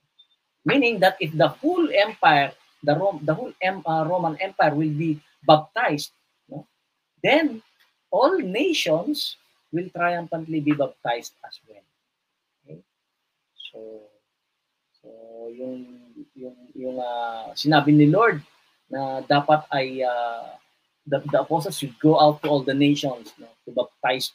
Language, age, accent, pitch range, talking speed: English, 20-39, Filipino, 130-170 Hz, 135 wpm